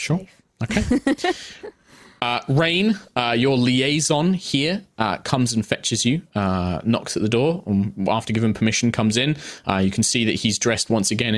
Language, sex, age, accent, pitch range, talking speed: English, male, 20-39, British, 105-140 Hz, 175 wpm